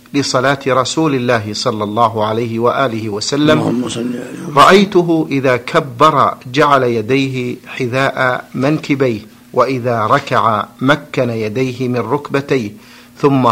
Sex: male